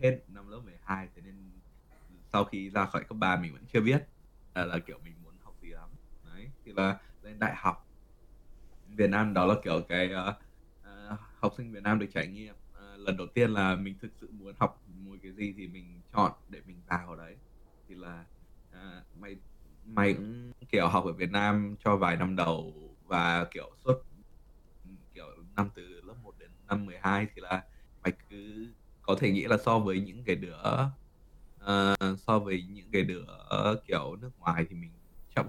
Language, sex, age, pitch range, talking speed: Vietnamese, male, 20-39, 90-105 Hz, 195 wpm